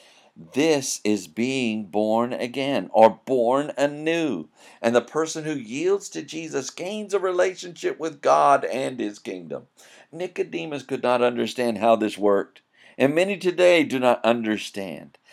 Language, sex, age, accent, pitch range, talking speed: English, male, 50-69, American, 110-155 Hz, 140 wpm